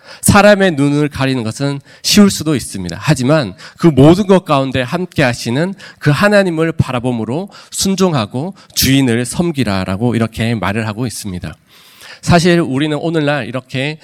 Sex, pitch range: male, 115-155 Hz